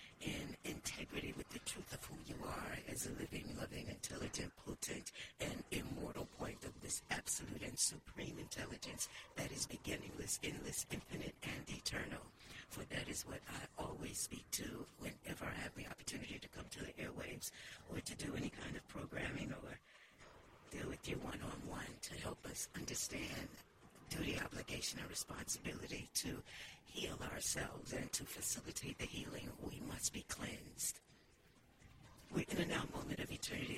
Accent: American